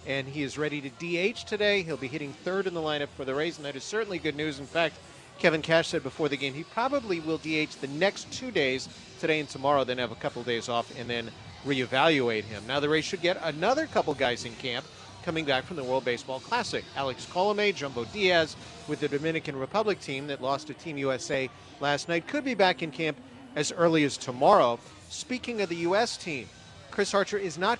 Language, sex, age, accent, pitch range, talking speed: English, male, 40-59, American, 130-175 Hz, 225 wpm